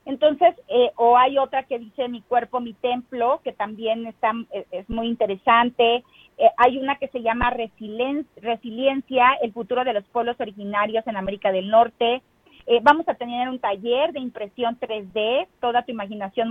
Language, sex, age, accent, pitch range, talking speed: Spanish, female, 30-49, Mexican, 225-280 Hz, 170 wpm